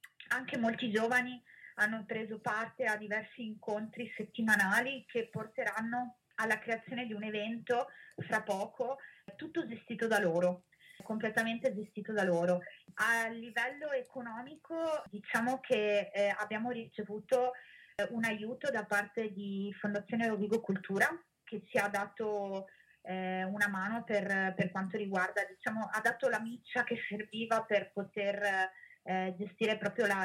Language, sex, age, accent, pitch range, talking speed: Italian, female, 20-39, native, 205-235 Hz, 135 wpm